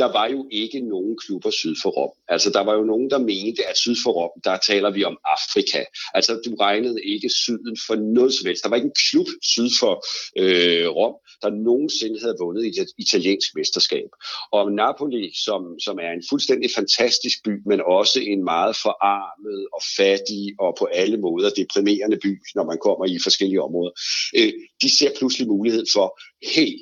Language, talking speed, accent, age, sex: Danish, 190 wpm, native, 60-79, male